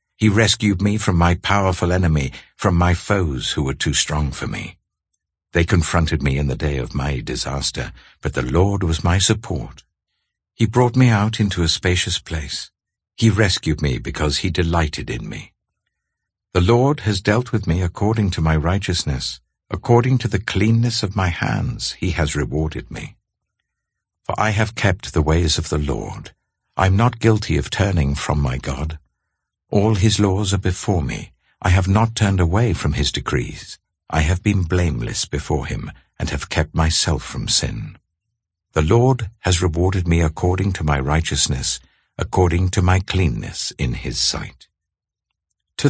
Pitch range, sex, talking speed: 80-105 Hz, male, 170 wpm